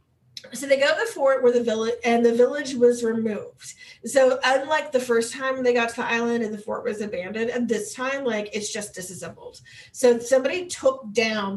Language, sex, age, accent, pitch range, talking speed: English, female, 30-49, American, 210-255 Hz, 205 wpm